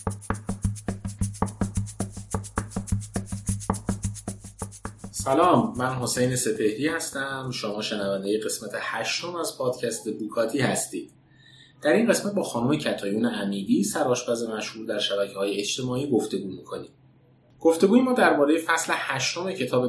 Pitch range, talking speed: 105-140 Hz, 110 wpm